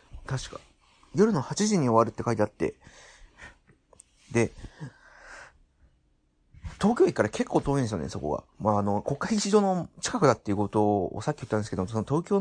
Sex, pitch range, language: male, 95-150 Hz, Japanese